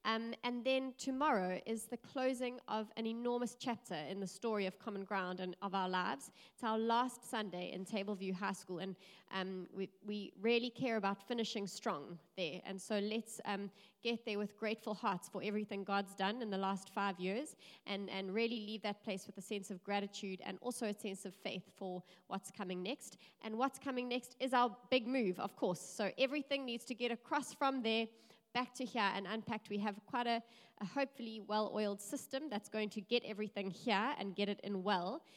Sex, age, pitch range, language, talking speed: female, 30-49, 185-225 Hz, English, 205 wpm